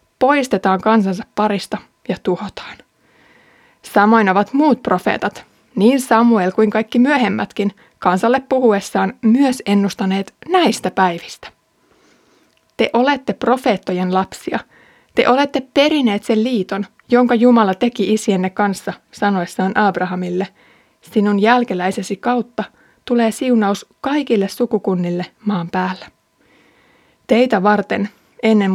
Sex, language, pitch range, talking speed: female, Finnish, 195-240 Hz, 100 wpm